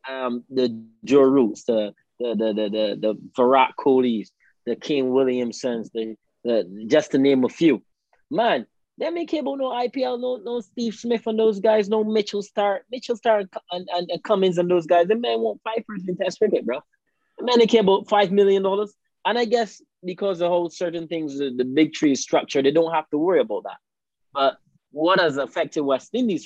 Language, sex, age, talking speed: English, male, 20-39, 195 wpm